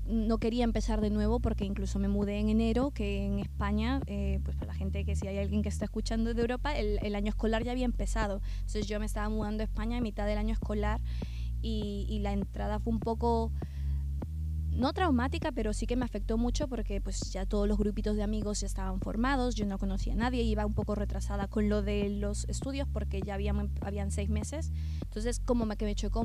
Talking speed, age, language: 225 wpm, 20-39, Spanish